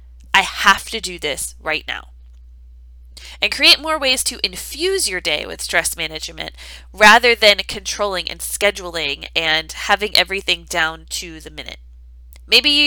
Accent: American